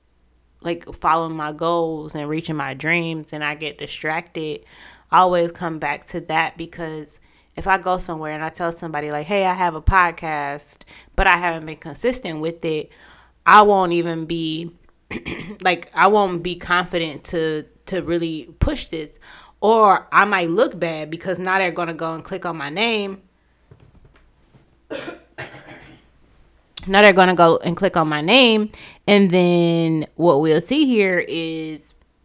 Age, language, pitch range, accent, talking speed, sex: 20-39, English, 150-180 Hz, American, 160 wpm, female